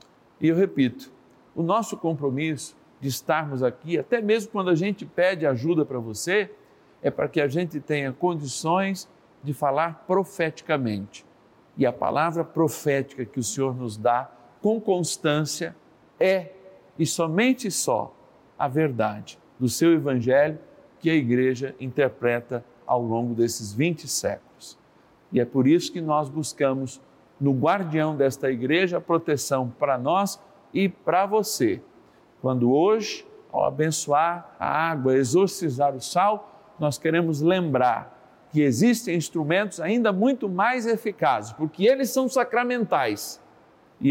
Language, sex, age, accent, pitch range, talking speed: Portuguese, male, 50-69, Brazilian, 130-180 Hz, 135 wpm